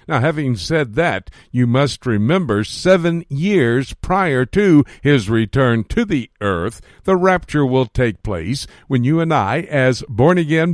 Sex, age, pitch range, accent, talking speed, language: male, 60-79, 115-155 Hz, American, 150 wpm, English